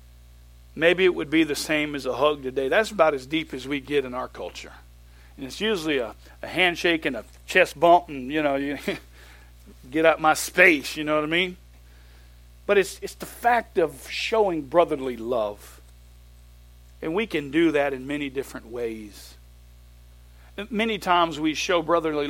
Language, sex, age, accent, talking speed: English, male, 50-69, American, 175 wpm